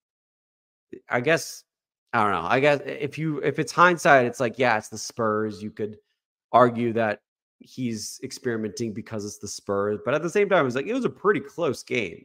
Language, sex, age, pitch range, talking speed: English, male, 30-49, 105-155 Hz, 205 wpm